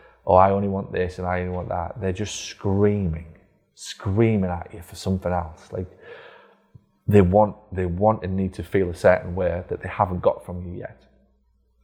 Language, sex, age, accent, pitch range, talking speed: English, male, 20-39, British, 85-100 Hz, 200 wpm